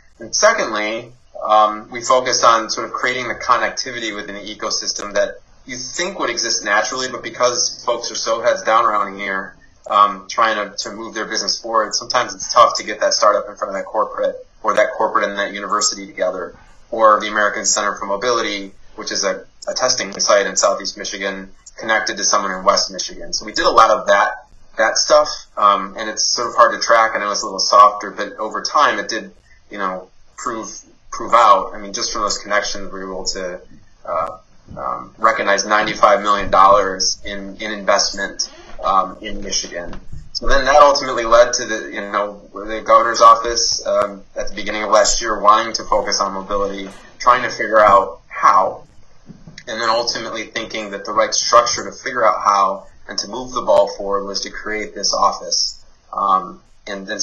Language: English